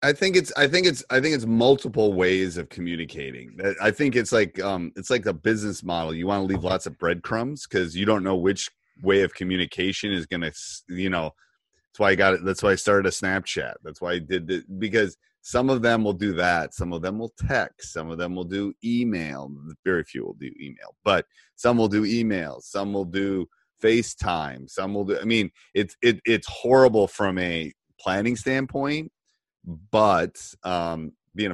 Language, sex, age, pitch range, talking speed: English, male, 30-49, 85-110 Hz, 205 wpm